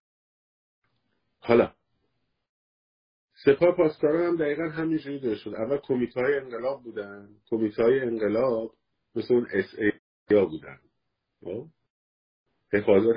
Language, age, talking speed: Persian, 50-69, 85 wpm